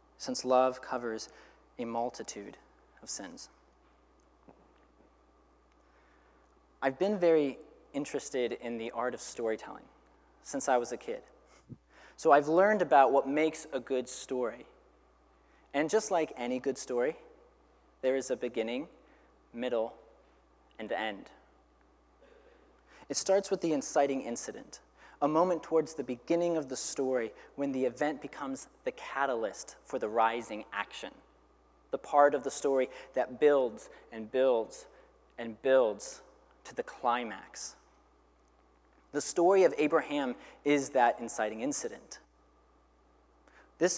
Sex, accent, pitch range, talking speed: male, American, 130-165 Hz, 125 wpm